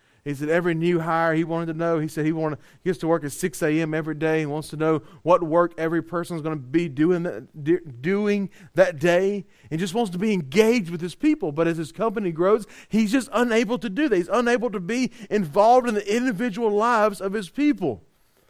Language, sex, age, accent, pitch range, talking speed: English, male, 30-49, American, 160-220 Hz, 235 wpm